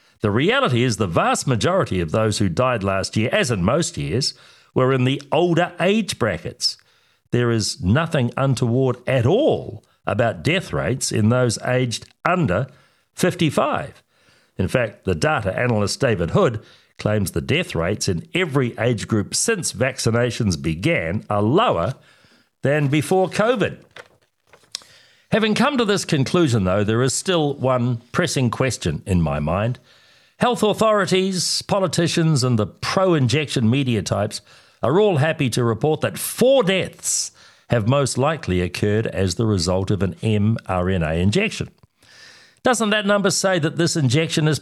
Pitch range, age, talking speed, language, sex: 115-175 Hz, 60-79, 145 wpm, English, male